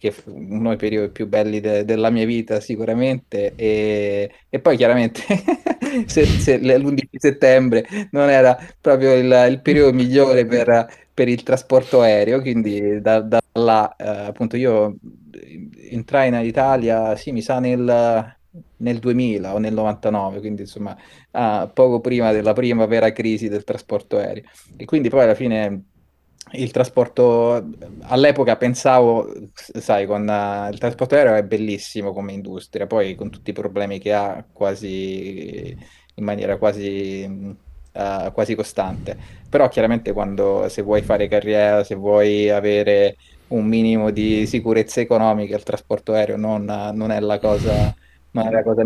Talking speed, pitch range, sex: 155 wpm, 105-125 Hz, male